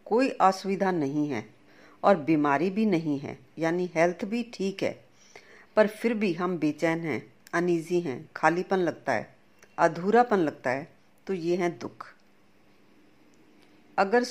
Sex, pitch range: female, 165-210 Hz